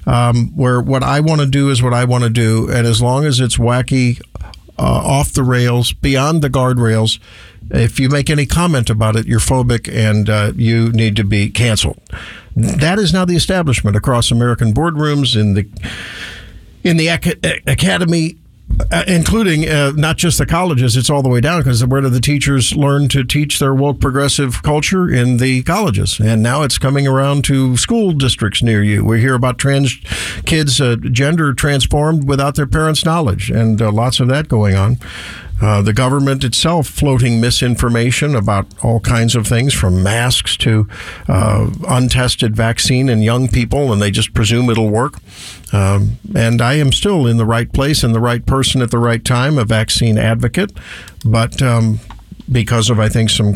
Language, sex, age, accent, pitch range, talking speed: English, male, 50-69, American, 110-140 Hz, 185 wpm